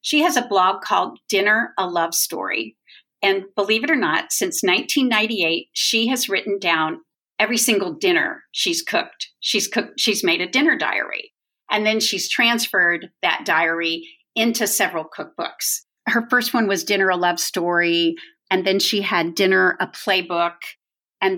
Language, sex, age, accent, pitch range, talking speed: English, female, 40-59, American, 175-255 Hz, 155 wpm